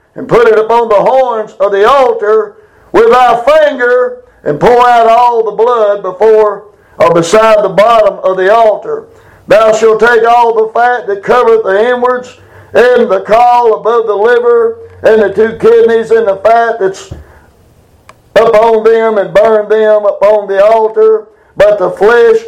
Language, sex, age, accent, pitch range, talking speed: English, male, 60-79, American, 210-270 Hz, 165 wpm